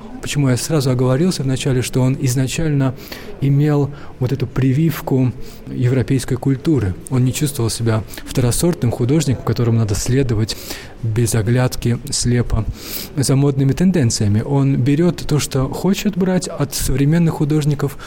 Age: 20-39